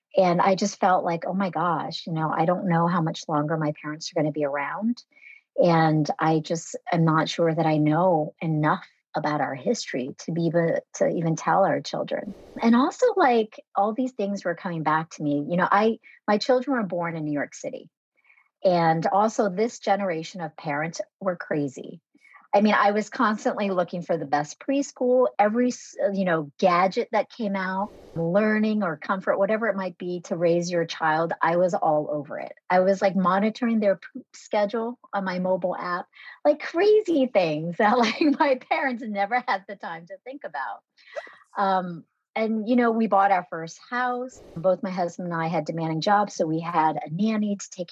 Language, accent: English, American